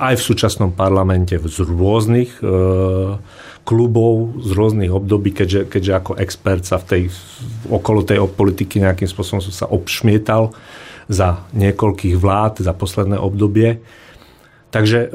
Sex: male